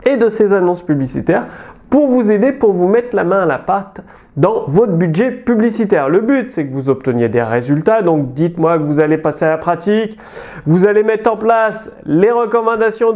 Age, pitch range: 30-49, 155-225 Hz